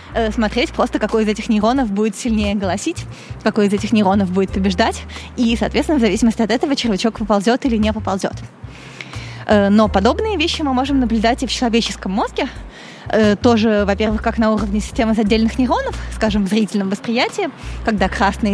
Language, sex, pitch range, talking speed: Russian, female, 210-235 Hz, 160 wpm